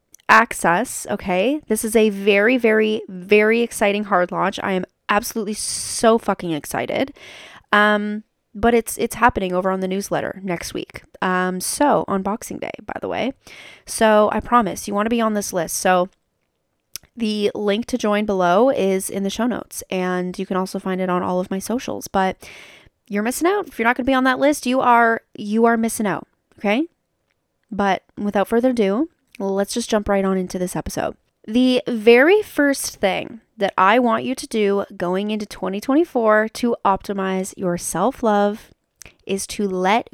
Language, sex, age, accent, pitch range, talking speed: English, female, 20-39, American, 195-240 Hz, 180 wpm